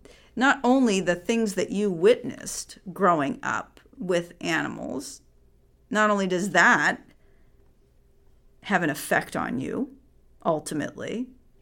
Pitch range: 170-220 Hz